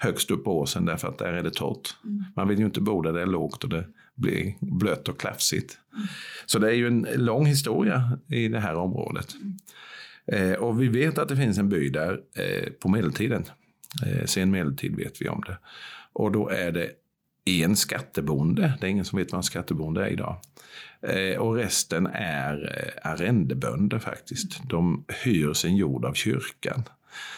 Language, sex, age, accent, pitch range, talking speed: Swedish, male, 50-69, native, 85-120 Hz, 175 wpm